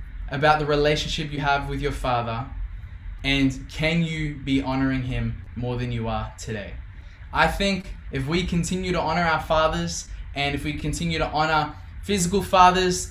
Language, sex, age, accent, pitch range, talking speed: English, male, 10-29, Australian, 130-155 Hz, 165 wpm